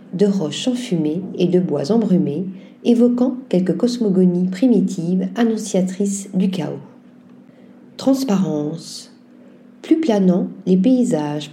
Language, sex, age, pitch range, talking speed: French, female, 50-69, 185-245 Hz, 100 wpm